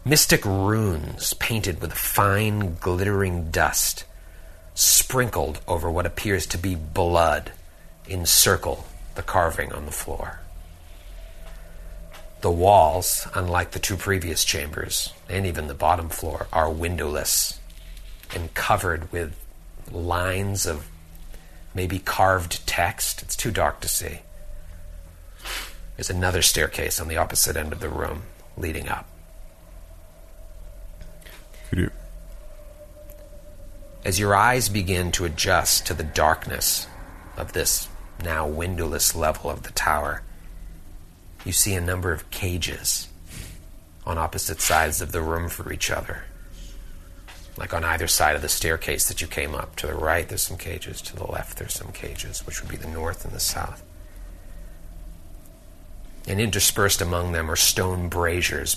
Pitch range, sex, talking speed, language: 80-95 Hz, male, 130 wpm, English